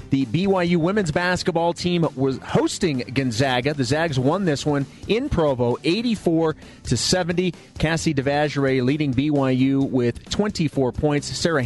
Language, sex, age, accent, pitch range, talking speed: English, male, 30-49, American, 130-180 Hz, 130 wpm